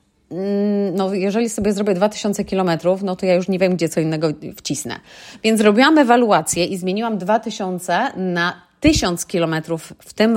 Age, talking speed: 30-49, 155 wpm